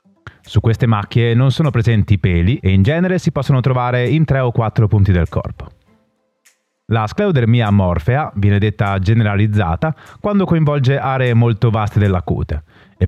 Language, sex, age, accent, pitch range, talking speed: Italian, male, 30-49, native, 100-140 Hz, 155 wpm